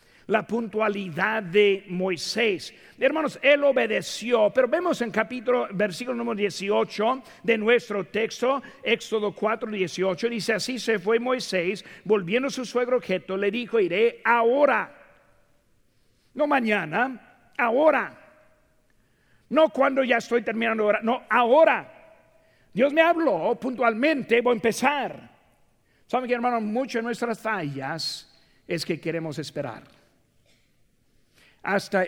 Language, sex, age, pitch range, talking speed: Spanish, male, 50-69, 175-240 Hz, 120 wpm